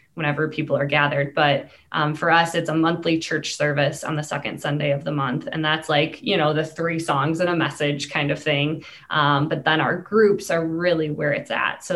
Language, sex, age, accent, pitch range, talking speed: English, female, 20-39, American, 150-190 Hz, 225 wpm